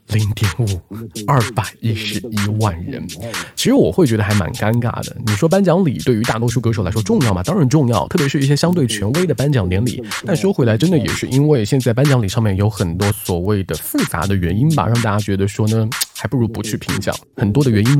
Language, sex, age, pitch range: Chinese, male, 20-39, 100-130 Hz